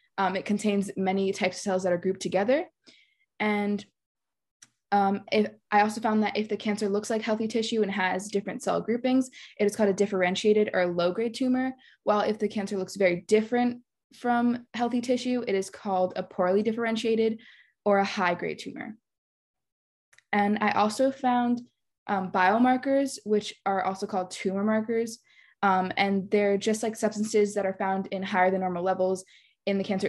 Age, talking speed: 20-39, 170 wpm